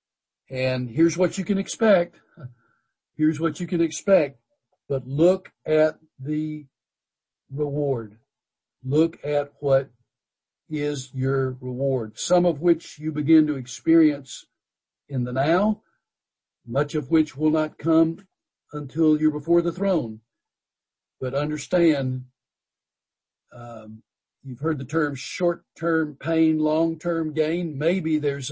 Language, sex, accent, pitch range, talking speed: English, male, American, 125-160 Hz, 120 wpm